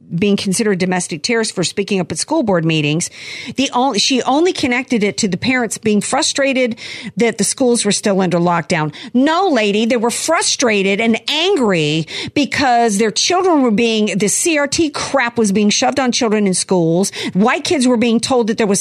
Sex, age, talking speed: female, 50-69, 190 wpm